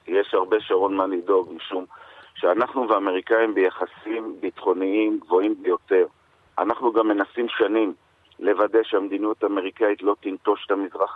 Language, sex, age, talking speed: Hebrew, male, 50-69, 125 wpm